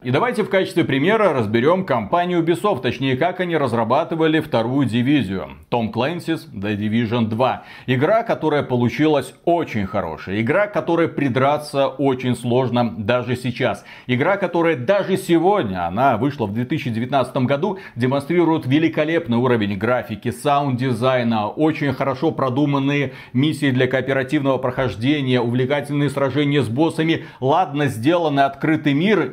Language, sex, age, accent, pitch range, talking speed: Russian, male, 40-59, native, 125-170 Hz, 125 wpm